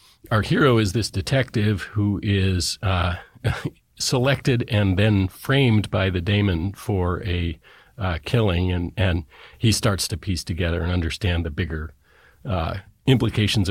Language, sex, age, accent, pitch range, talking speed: English, male, 40-59, American, 95-115 Hz, 140 wpm